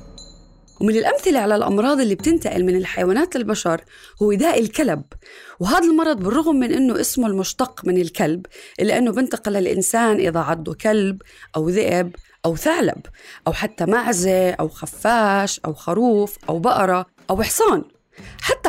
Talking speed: 140 wpm